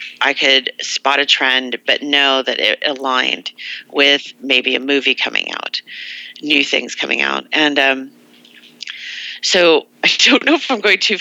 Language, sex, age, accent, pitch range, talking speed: English, female, 40-59, American, 135-165 Hz, 160 wpm